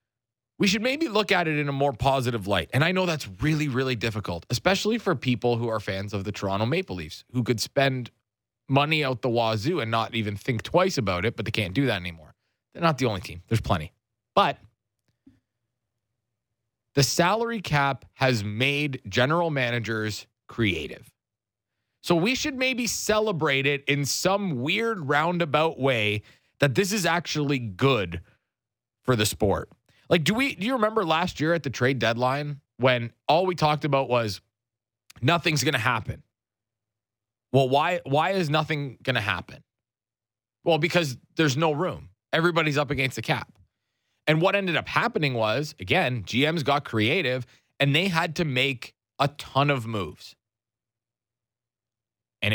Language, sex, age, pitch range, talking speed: English, male, 30-49, 115-155 Hz, 165 wpm